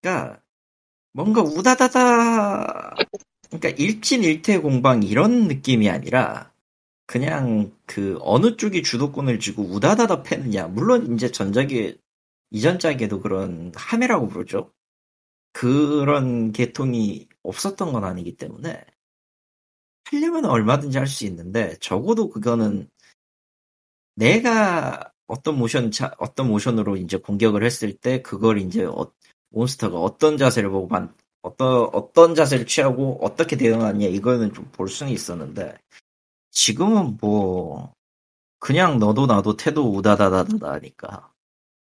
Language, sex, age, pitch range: Korean, male, 40-59, 105-170 Hz